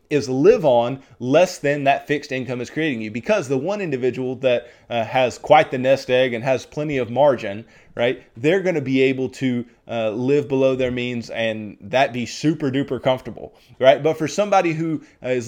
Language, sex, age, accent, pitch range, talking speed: English, male, 20-39, American, 125-150 Hz, 200 wpm